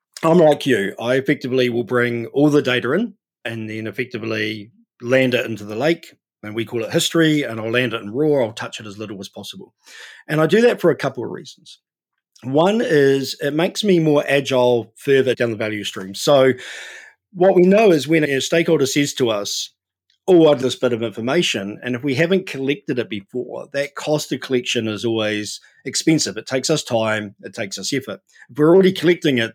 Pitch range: 120-155 Hz